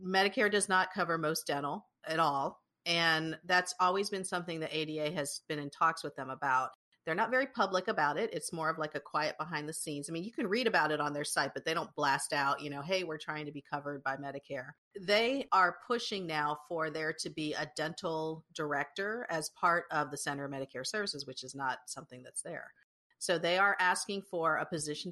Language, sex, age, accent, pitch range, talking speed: English, female, 40-59, American, 145-180 Hz, 225 wpm